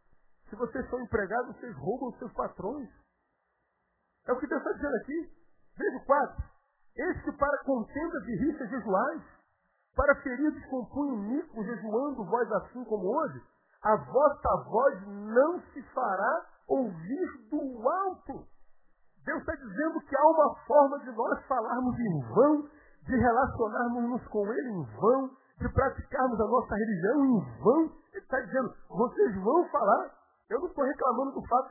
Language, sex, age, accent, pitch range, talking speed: Portuguese, male, 50-69, Brazilian, 190-270 Hz, 150 wpm